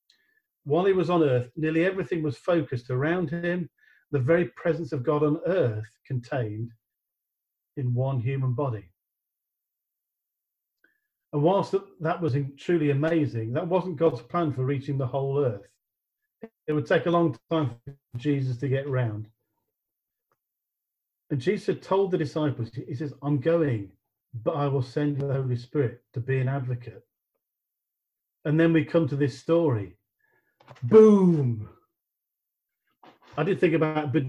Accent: British